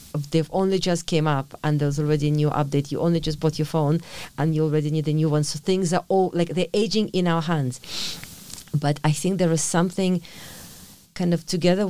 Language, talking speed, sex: English, 215 wpm, female